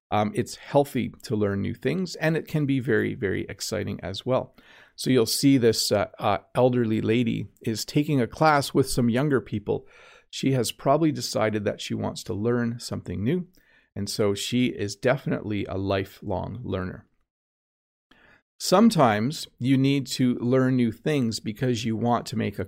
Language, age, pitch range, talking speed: English, 40-59, 110-140 Hz, 170 wpm